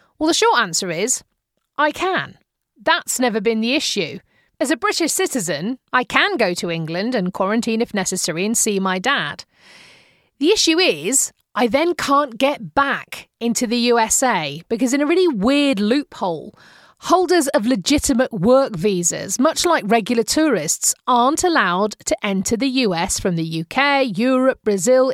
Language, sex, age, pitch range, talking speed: English, female, 40-59, 225-290 Hz, 160 wpm